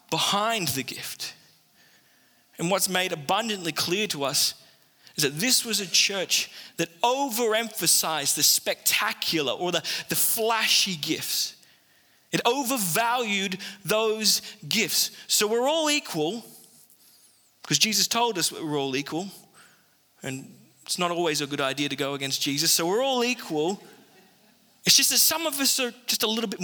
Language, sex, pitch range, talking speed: English, male, 160-230 Hz, 150 wpm